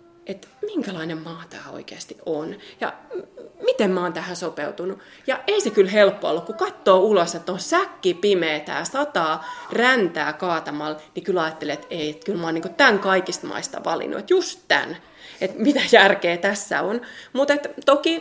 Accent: native